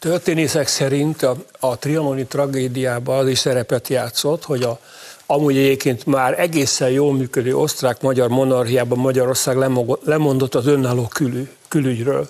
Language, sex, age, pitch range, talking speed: Hungarian, male, 60-79, 125-145 Hz, 125 wpm